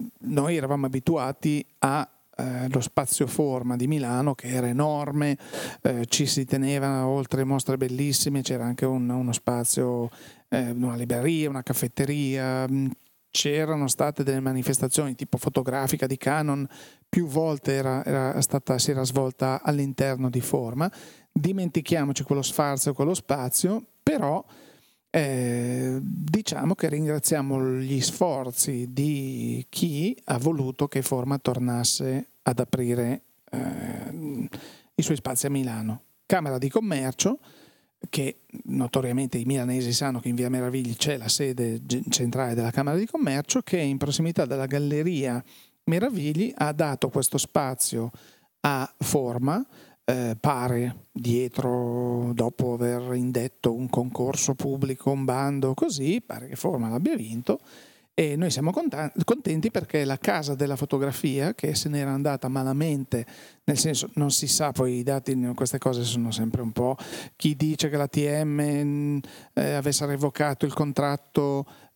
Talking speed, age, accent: 130 wpm, 40-59, native